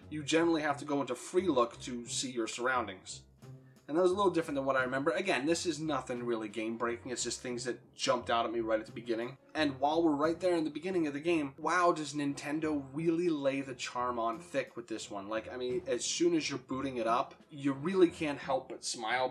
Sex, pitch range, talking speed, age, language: male, 115-155 Hz, 245 wpm, 20-39, English